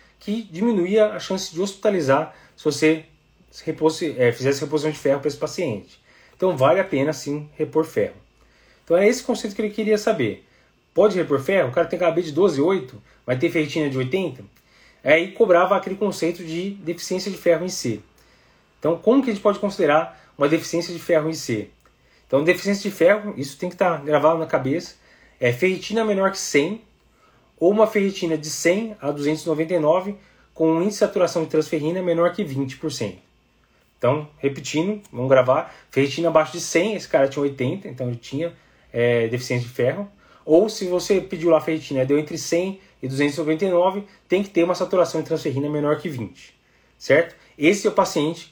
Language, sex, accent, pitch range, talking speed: Portuguese, male, Brazilian, 145-190 Hz, 185 wpm